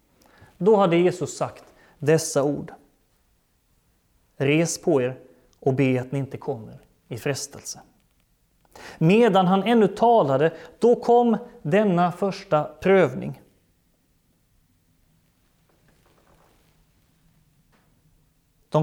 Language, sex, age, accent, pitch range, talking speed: Swedish, male, 30-49, native, 140-190 Hz, 85 wpm